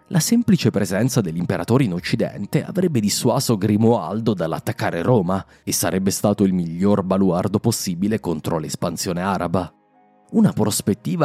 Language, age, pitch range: Italian, 30-49, 95-120 Hz